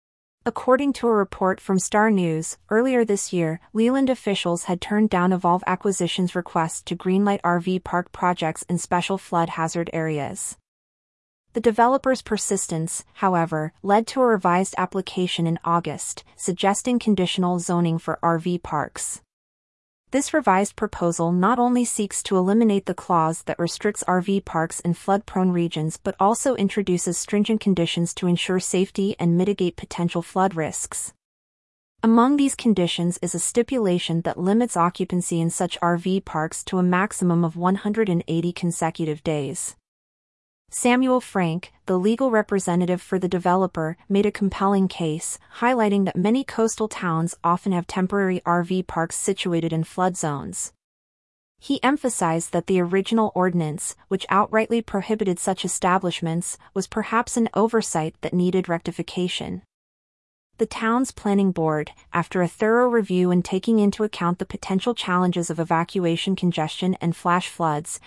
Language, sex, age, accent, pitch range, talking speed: English, female, 30-49, American, 170-205 Hz, 140 wpm